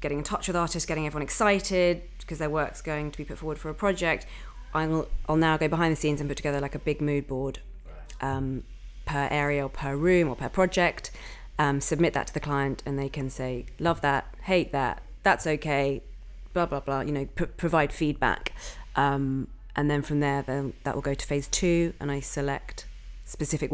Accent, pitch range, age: British, 135-155 Hz, 30-49